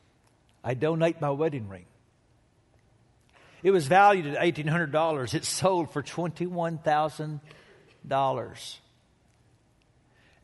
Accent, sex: American, male